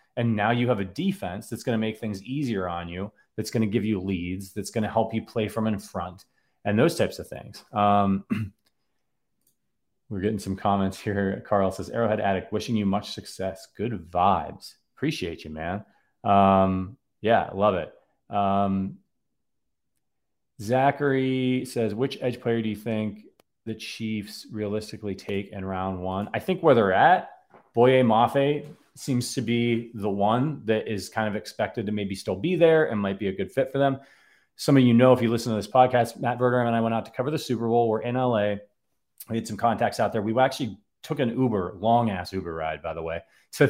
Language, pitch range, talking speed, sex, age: English, 100-120 Hz, 200 wpm, male, 30-49